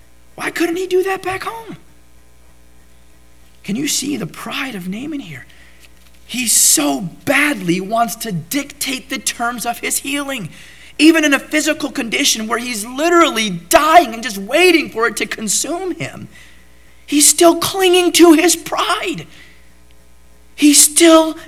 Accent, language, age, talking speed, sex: American, English, 30-49, 140 wpm, male